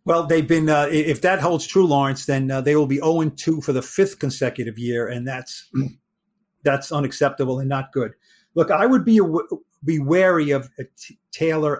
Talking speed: 195 wpm